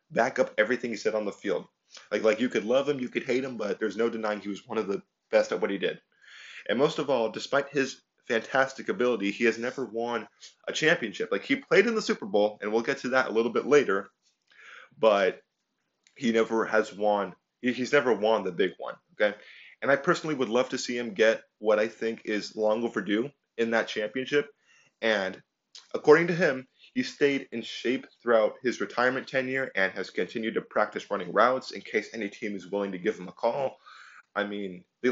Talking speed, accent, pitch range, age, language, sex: 215 wpm, American, 110-135 Hz, 20-39, English, male